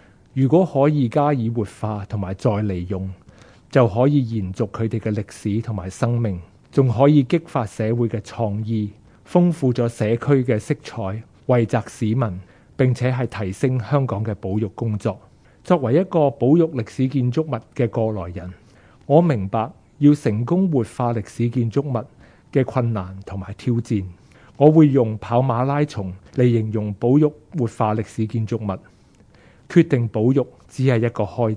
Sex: male